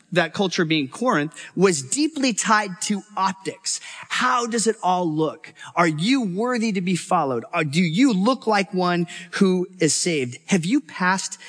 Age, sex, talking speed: 30-49, male, 165 wpm